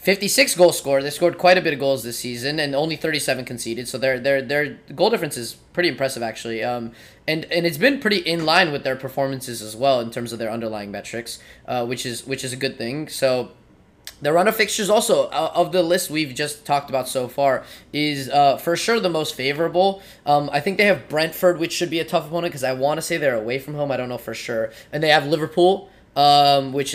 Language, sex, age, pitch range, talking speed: English, male, 20-39, 120-155 Hz, 235 wpm